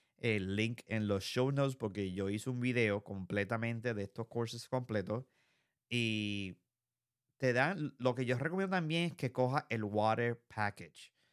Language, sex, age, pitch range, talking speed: Spanish, male, 30-49, 100-125 Hz, 160 wpm